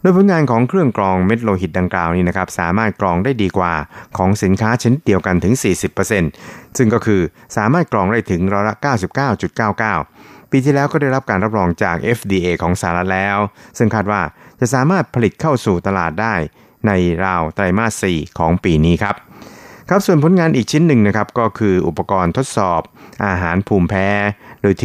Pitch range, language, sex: 90-115 Hz, Thai, male